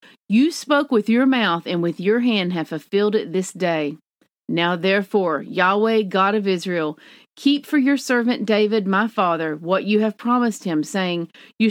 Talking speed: 175 wpm